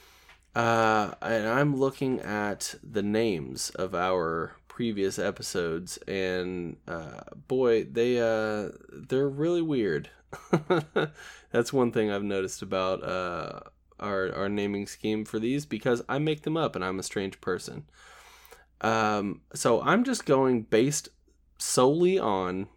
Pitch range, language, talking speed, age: 100-130 Hz, English, 130 wpm, 20-39